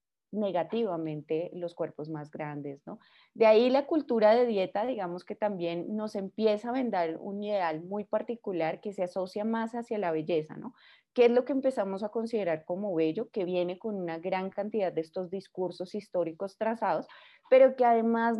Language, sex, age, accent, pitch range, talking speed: Spanish, female, 30-49, Colombian, 175-230 Hz, 175 wpm